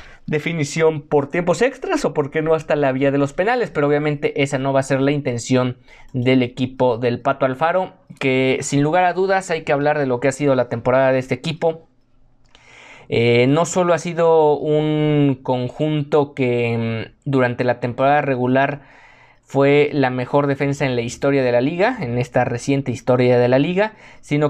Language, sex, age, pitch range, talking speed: Spanish, male, 20-39, 125-150 Hz, 185 wpm